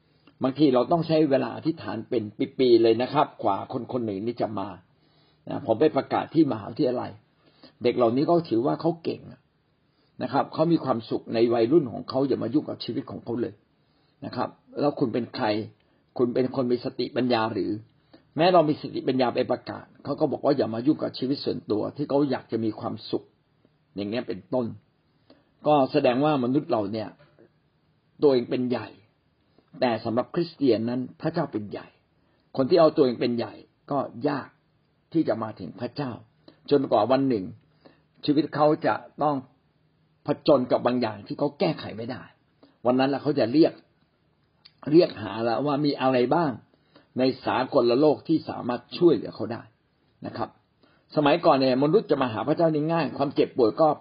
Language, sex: Thai, male